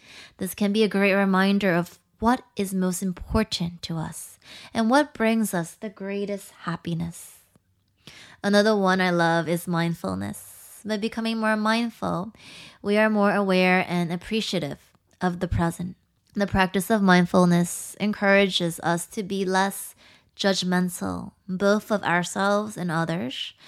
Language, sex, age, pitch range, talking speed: English, female, 20-39, 170-210 Hz, 135 wpm